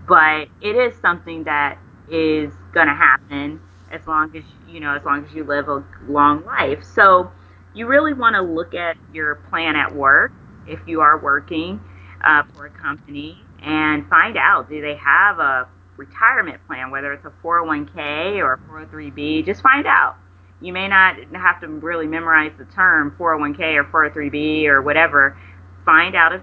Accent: American